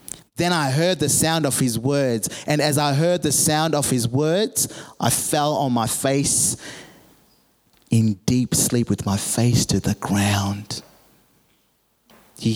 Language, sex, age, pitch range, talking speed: English, male, 30-49, 115-150 Hz, 155 wpm